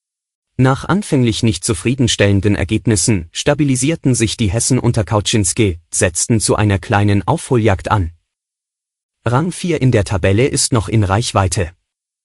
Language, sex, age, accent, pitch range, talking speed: German, male, 30-49, German, 100-125 Hz, 125 wpm